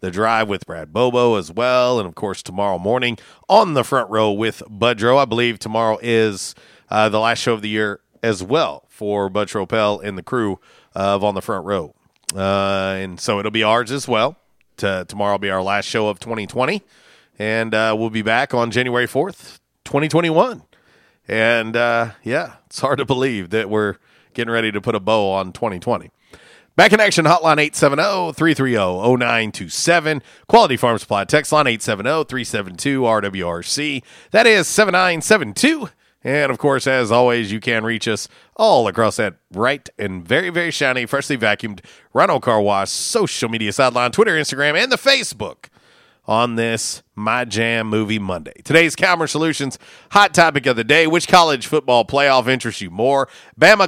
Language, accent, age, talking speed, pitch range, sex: English, American, 40-59, 165 wpm, 105-145 Hz, male